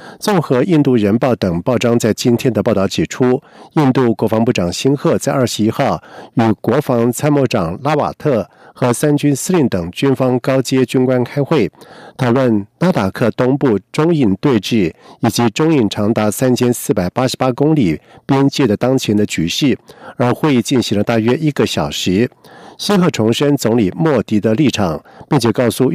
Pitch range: 110-140 Hz